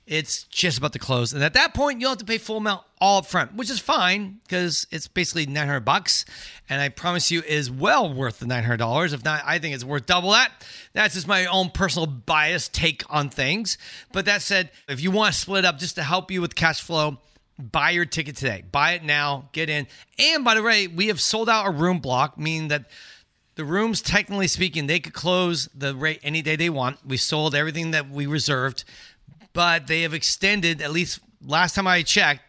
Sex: male